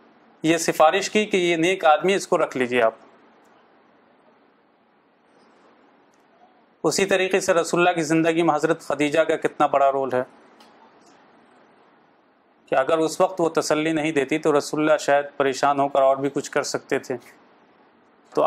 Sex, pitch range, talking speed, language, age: male, 135-155 Hz, 160 wpm, Urdu, 30-49